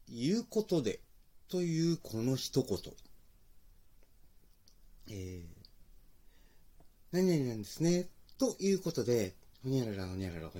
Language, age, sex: Japanese, 40-59, male